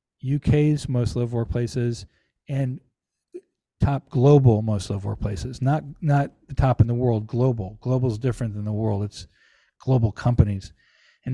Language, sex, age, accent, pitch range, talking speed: English, male, 50-69, American, 115-140 Hz, 155 wpm